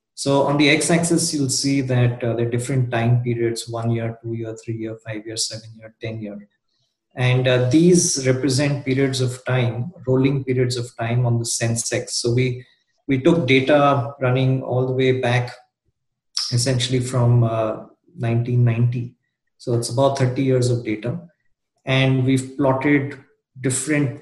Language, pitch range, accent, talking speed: English, 120-140 Hz, Indian, 155 wpm